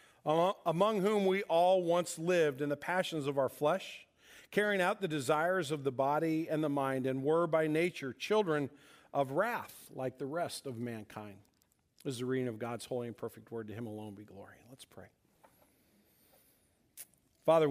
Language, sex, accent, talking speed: English, male, American, 175 wpm